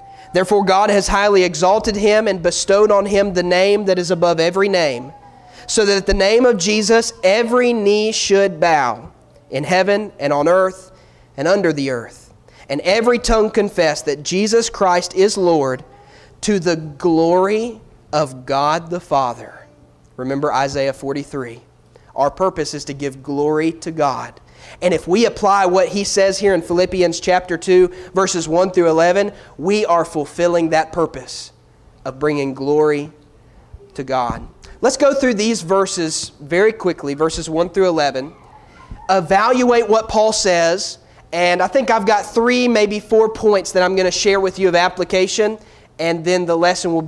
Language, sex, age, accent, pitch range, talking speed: English, male, 30-49, American, 160-215 Hz, 165 wpm